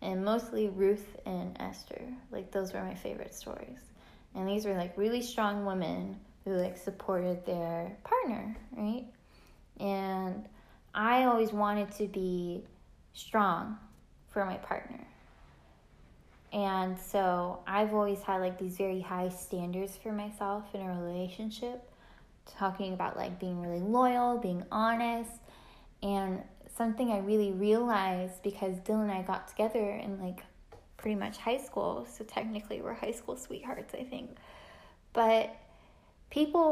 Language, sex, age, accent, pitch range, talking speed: English, female, 10-29, American, 190-225 Hz, 135 wpm